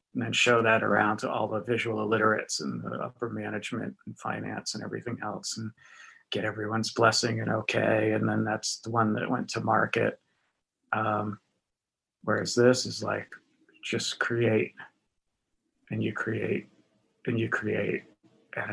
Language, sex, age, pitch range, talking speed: English, male, 30-49, 110-145 Hz, 155 wpm